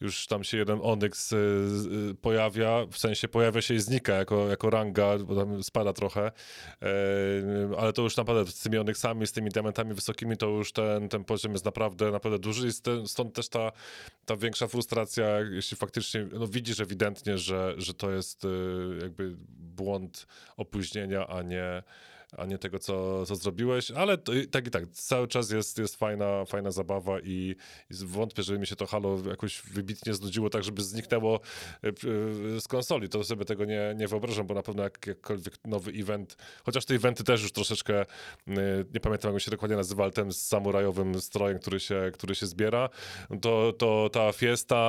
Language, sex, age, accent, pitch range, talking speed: Polish, male, 20-39, native, 100-110 Hz, 170 wpm